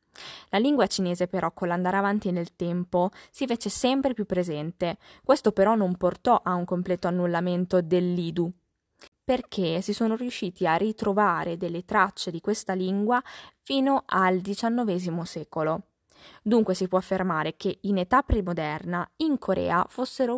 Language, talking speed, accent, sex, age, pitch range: Italian, 145 wpm, native, female, 20-39, 185-225 Hz